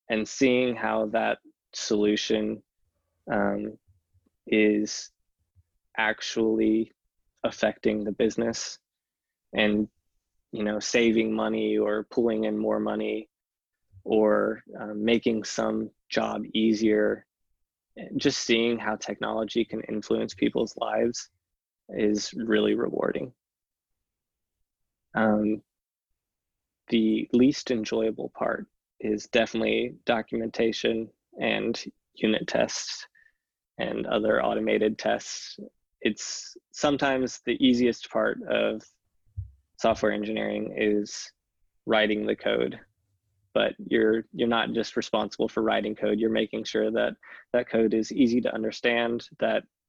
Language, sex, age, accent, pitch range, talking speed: English, male, 20-39, American, 105-115 Hz, 100 wpm